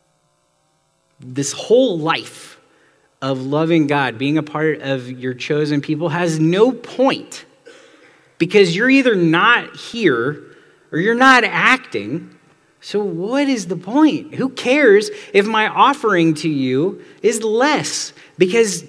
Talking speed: 125 wpm